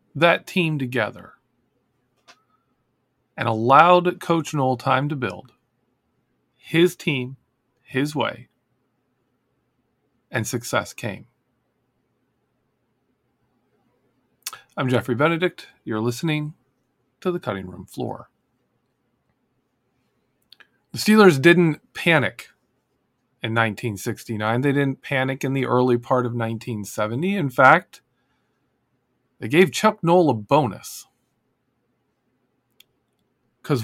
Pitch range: 120-155 Hz